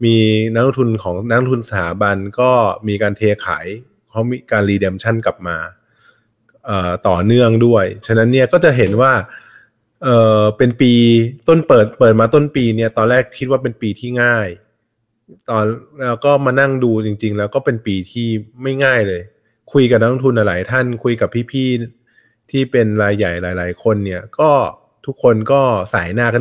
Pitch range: 105-120 Hz